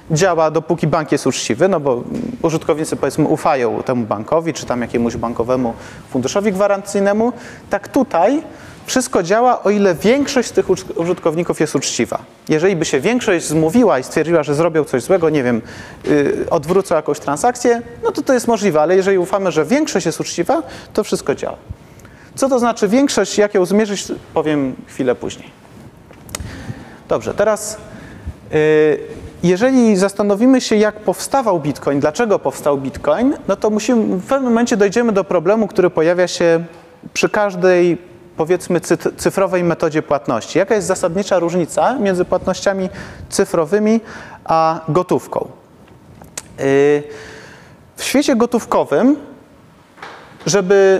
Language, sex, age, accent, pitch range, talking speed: Polish, male, 30-49, native, 165-220 Hz, 135 wpm